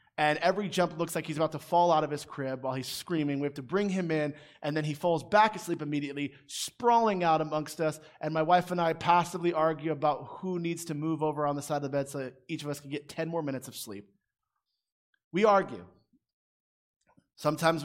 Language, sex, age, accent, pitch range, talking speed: English, male, 30-49, American, 145-175 Hz, 225 wpm